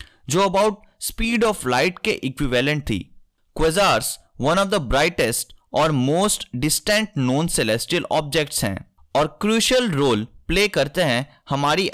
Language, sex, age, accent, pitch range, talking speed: Hindi, male, 20-39, native, 120-195 Hz, 130 wpm